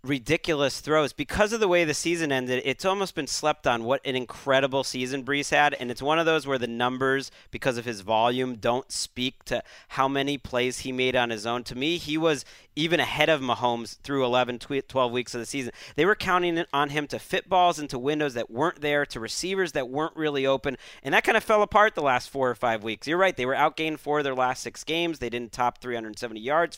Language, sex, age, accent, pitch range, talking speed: English, male, 40-59, American, 125-155 Hz, 235 wpm